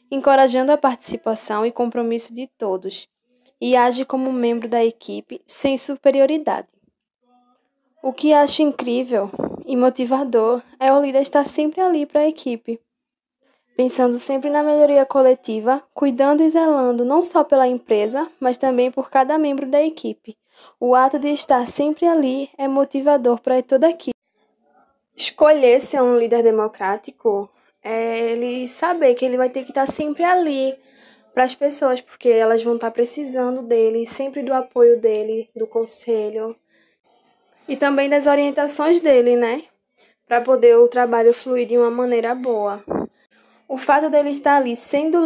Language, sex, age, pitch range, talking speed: Portuguese, female, 10-29, 235-275 Hz, 150 wpm